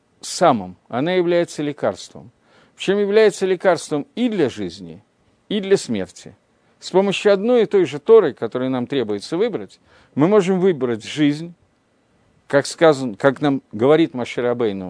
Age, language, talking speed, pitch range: 50-69, Russian, 140 wpm, 130-180 Hz